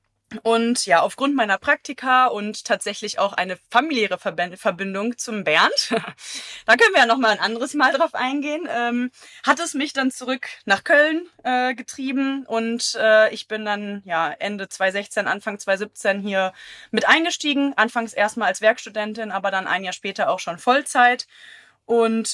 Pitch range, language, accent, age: 205-250 Hz, German, German, 20-39